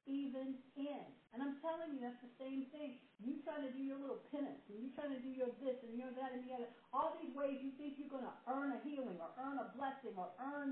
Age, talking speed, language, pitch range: 60-79, 260 wpm, English, 190-275 Hz